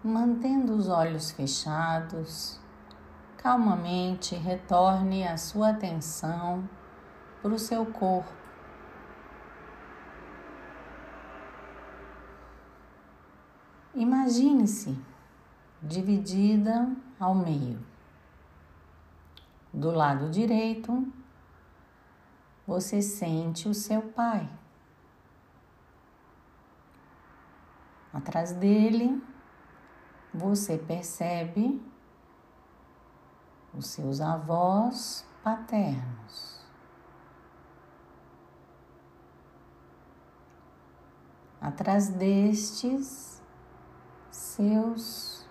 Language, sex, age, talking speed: Portuguese, female, 50-69, 45 wpm